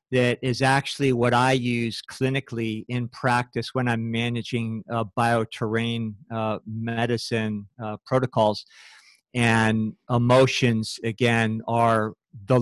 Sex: male